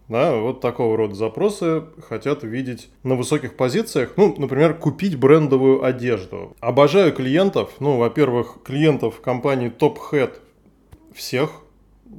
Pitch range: 120-150 Hz